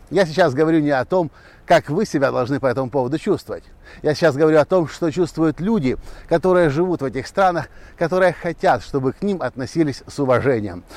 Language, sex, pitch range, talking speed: Russian, male, 125-175 Hz, 190 wpm